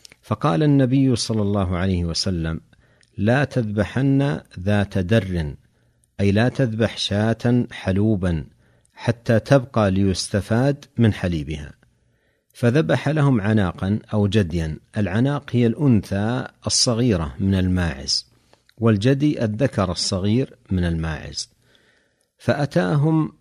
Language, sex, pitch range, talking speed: Arabic, male, 95-125 Hz, 95 wpm